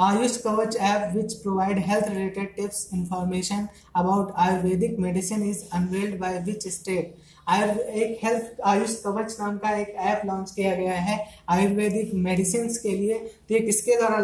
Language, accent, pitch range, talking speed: Hindi, native, 185-215 Hz, 155 wpm